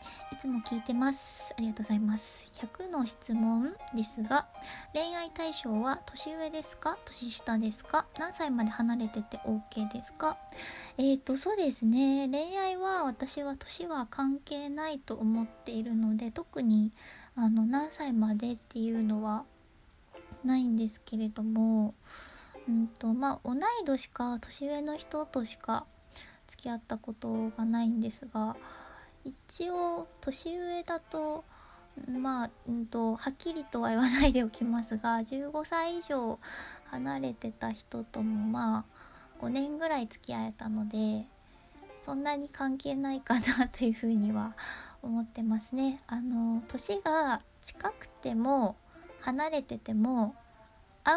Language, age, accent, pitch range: Japanese, 20-39, native, 225-280 Hz